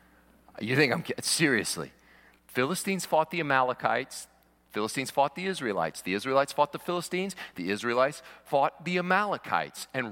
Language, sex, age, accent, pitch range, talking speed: English, male, 40-59, American, 140-225 Hz, 140 wpm